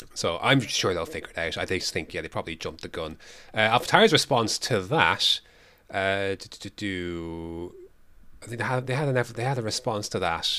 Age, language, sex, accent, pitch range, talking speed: 30-49, English, male, British, 90-115 Hz, 220 wpm